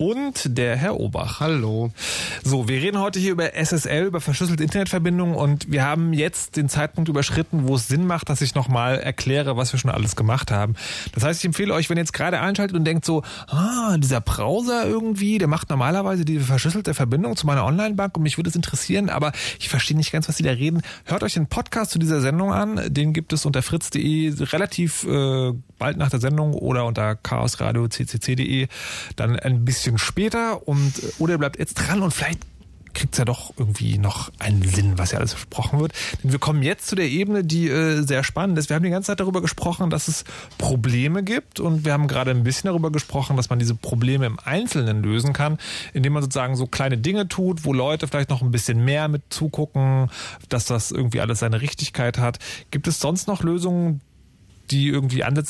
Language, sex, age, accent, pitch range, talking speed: German, male, 30-49, German, 125-165 Hz, 210 wpm